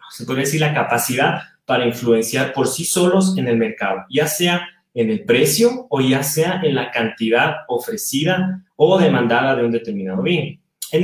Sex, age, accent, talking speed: male, 30-49, Mexican, 175 wpm